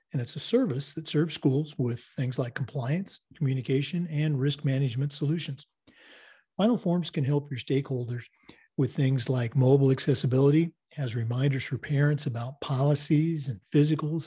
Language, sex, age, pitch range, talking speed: English, male, 50-69, 130-160 Hz, 145 wpm